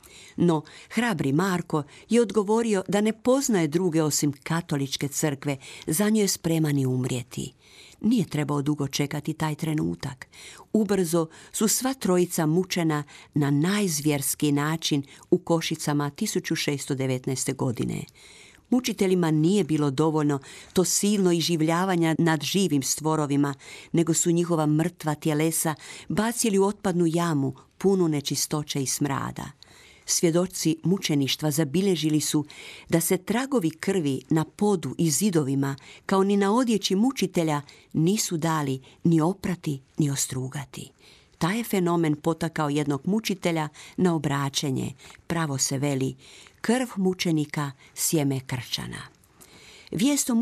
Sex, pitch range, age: female, 150-195 Hz, 50-69